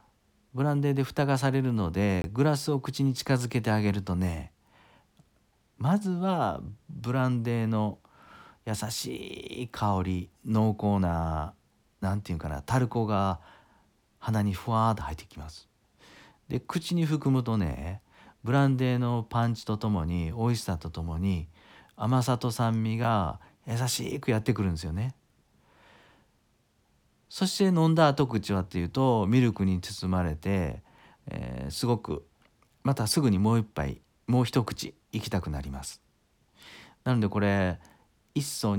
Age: 40-59